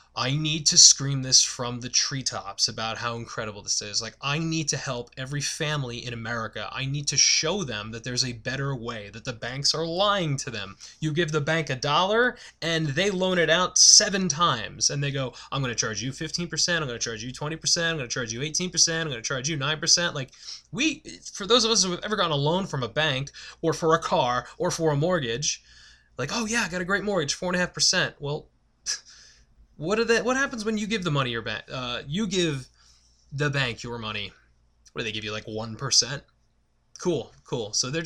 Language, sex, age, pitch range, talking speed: English, male, 20-39, 120-170 Hz, 225 wpm